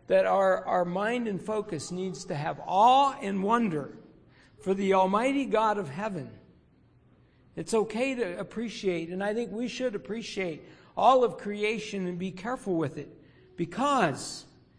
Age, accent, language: 60-79, American, English